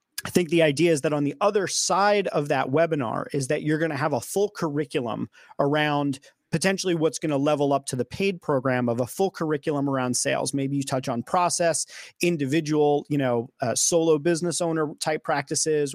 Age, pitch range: 30-49, 140-165 Hz